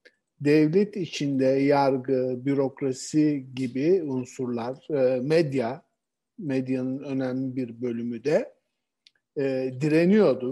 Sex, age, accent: male, 60-79, native